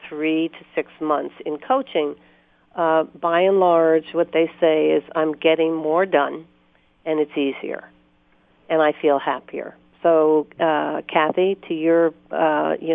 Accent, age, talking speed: American, 50-69, 150 wpm